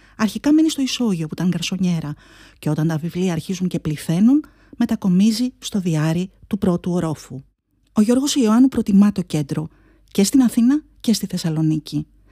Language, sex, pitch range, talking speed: Greek, female, 160-230 Hz, 155 wpm